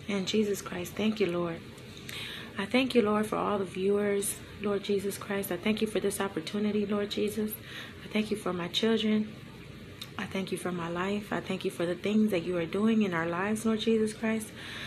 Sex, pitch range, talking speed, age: female, 180-215 Hz, 215 wpm, 30-49